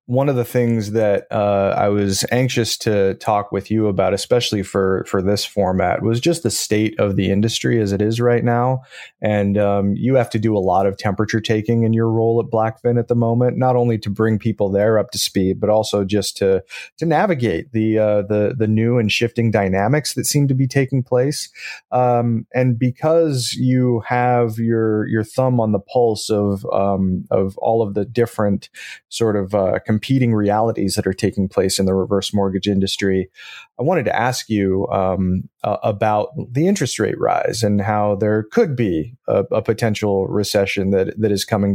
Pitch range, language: 100-120 Hz, English